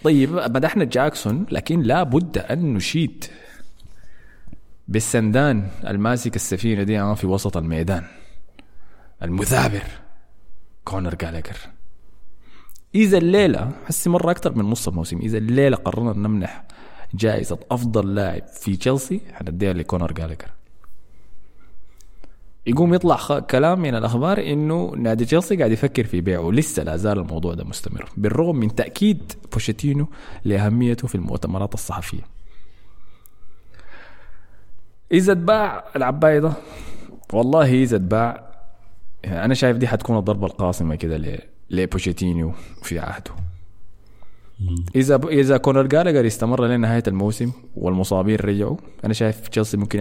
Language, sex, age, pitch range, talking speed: Arabic, male, 20-39, 95-130 Hz, 115 wpm